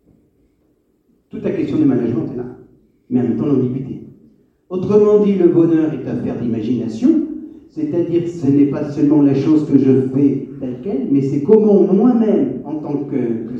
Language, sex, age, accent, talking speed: French, male, 60-79, French, 170 wpm